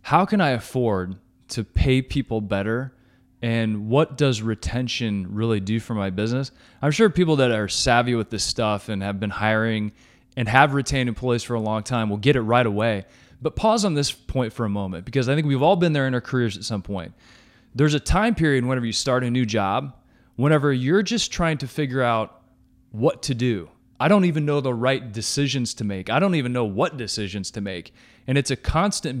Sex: male